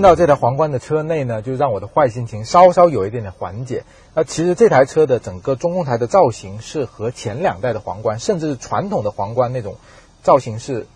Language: Chinese